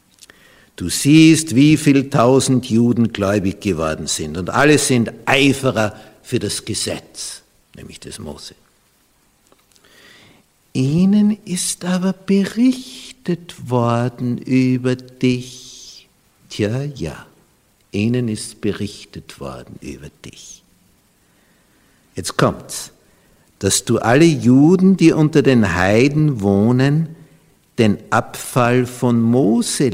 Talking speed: 100 wpm